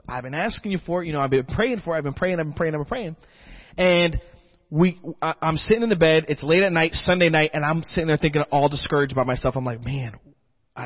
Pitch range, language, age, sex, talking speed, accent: 125-165 Hz, English, 30-49, male, 265 wpm, American